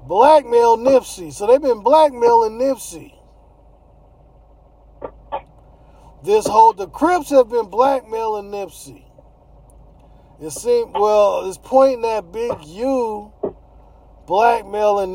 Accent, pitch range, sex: American, 170-255 Hz, male